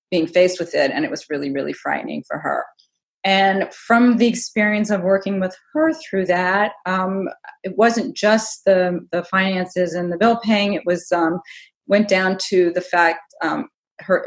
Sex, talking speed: female, 180 wpm